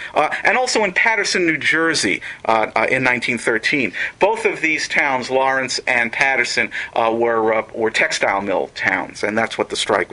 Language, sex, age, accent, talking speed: English, male, 50-69, American, 180 wpm